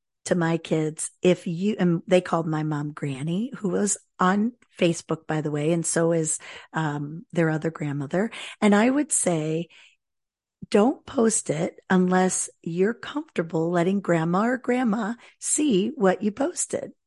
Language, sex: English, female